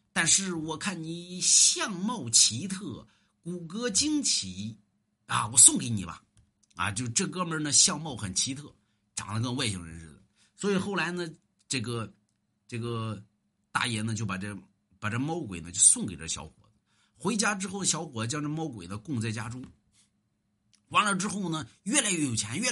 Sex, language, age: male, Chinese, 50-69